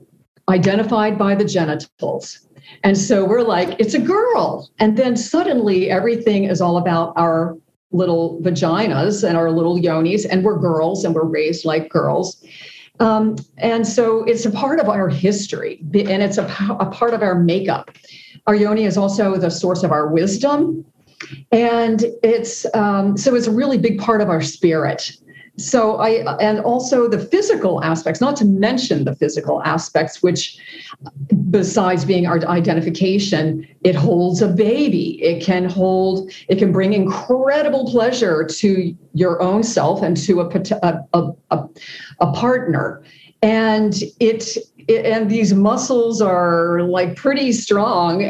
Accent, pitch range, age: American, 170-215 Hz, 50-69